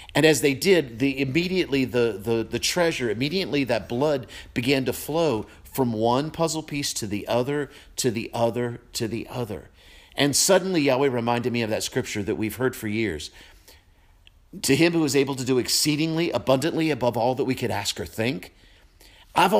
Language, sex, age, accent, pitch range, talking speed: English, male, 50-69, American, 110-150 Hz, 185 wpm